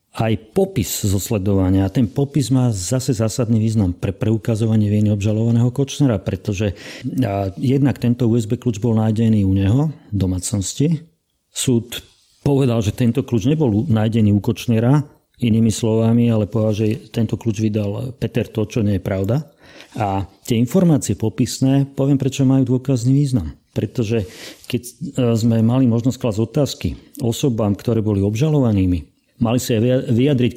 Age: 40-59